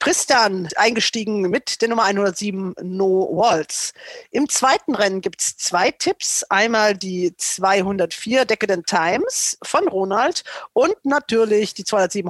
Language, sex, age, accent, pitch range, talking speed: German, female, 50-69, German, 200-285 Hz, 125 wpm